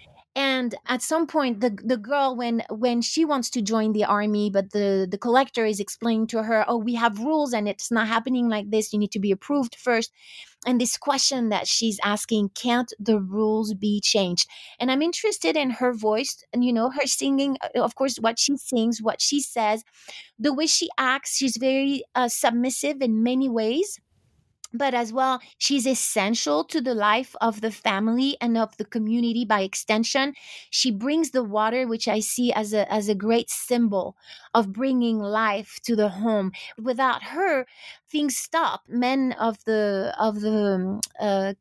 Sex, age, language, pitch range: female, 30-49, English, 215-265 Hz